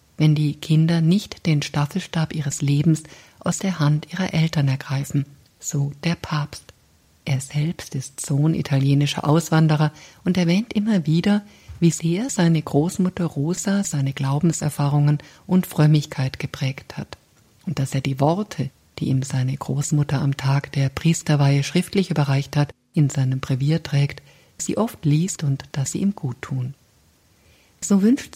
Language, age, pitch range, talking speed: German, 50-69, 140-165 Hz, 145 wpm